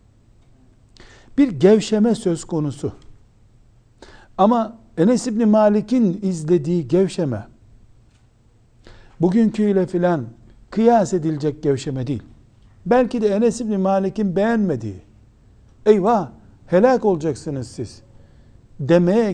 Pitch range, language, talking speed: 115-190 Hz, Turkish, 85 wpm